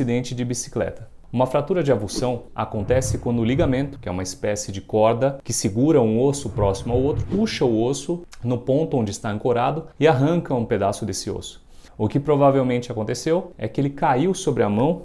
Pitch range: 115-140 Hz